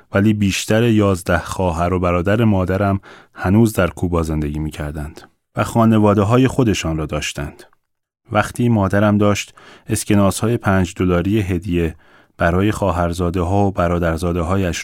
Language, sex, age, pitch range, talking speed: Persian, male, 30-49, 90-105 Hz, 130 wpm